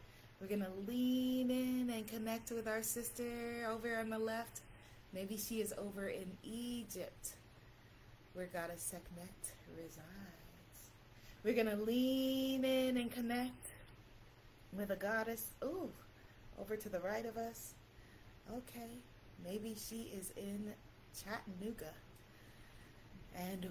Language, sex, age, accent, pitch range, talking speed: English, female, 30-49, American, 155-210 Hz, 115 wpm